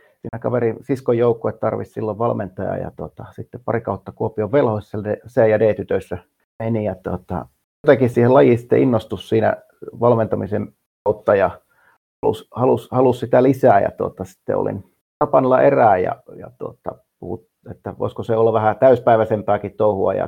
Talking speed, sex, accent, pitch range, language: 150 wpm, male, native, 110-125 Hz, Finnish